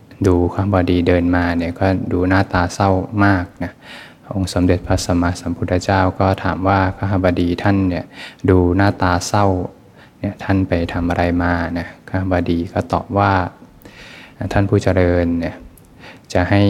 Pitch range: 90-100 Hz